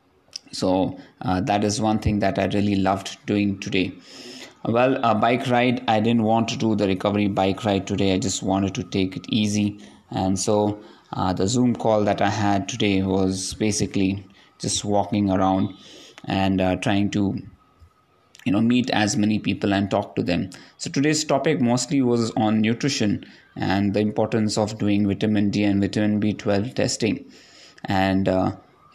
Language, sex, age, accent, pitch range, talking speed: English, male, 20-39, Indian, 100-115 Hz, 170 wpm